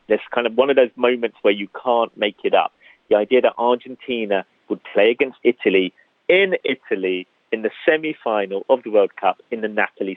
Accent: British